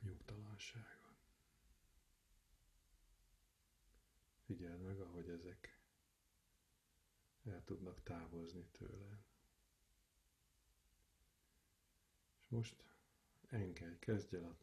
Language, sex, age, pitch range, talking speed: Hungarian, male, 50-69, 85-100 Hz, 60 wpm